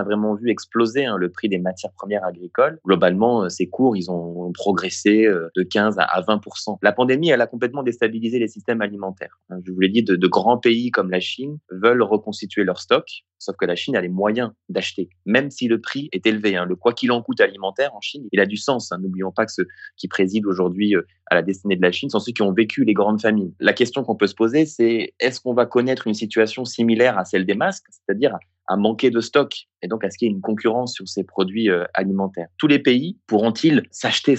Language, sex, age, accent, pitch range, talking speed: French, male, 20-39, French, 95-120 Hz, 240 wpm